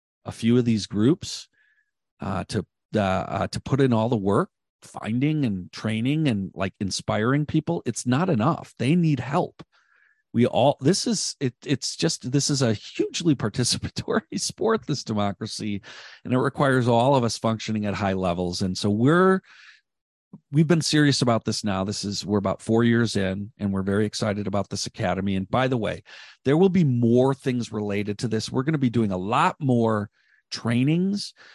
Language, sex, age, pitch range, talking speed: English, male, 40-59, 105-140 Hz, 185 wpm